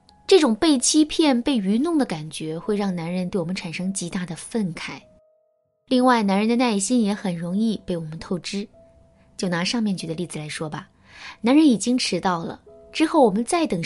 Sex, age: female, 20-39